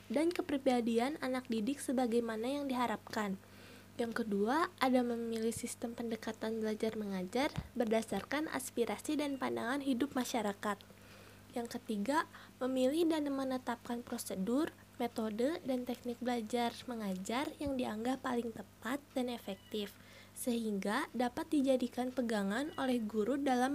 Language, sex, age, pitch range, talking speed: Indonesian, female, 20-39, 230-275 Hz, 110 wpm